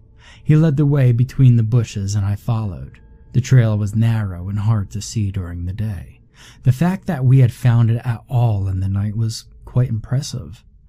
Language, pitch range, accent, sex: English, 105-125 Hz, American, male